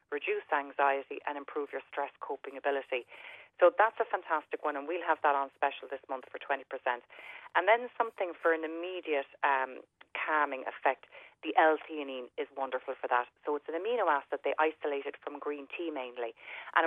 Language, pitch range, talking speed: English, 145-175 Hz, 185 wpm